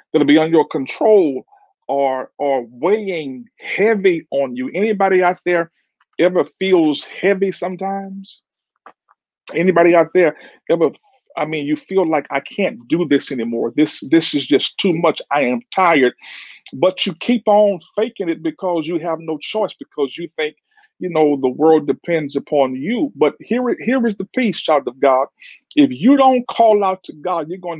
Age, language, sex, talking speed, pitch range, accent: 50-69, English, male, 175 wpm, 145-215 Hz, American